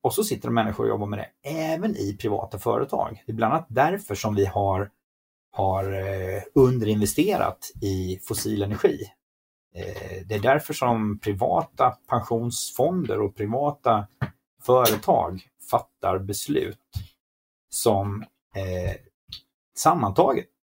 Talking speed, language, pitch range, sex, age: 115 wpm, Swedish, 100-120 Hz, male, 30-49